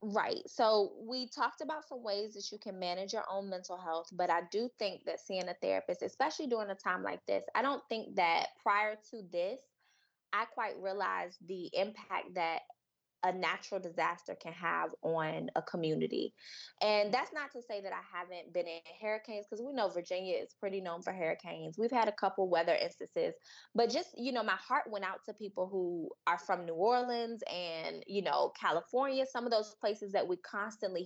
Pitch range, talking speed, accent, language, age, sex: 180-235 Hz, 195 wpm, American, English, 20-39, female